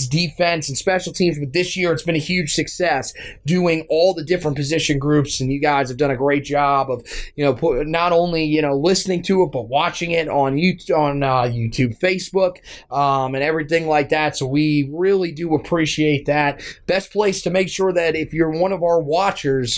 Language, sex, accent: English, male, American